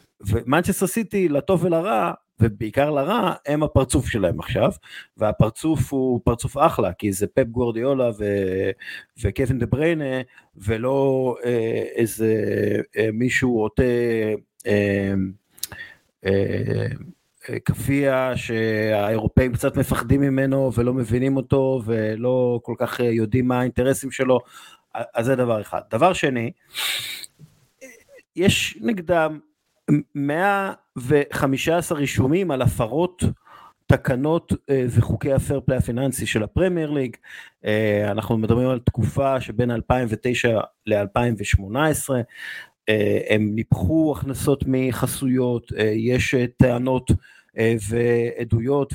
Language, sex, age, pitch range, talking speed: Hebrew, male, 50-69, 115-140 Hz, 95 wpm